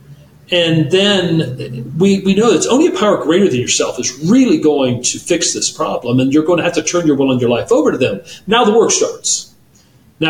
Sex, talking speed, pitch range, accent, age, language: male, 225 wpm, 135-195 Hz, American, 40-59, English